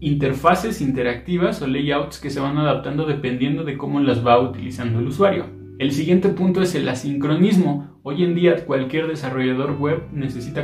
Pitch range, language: 130-165 Hz, Spanish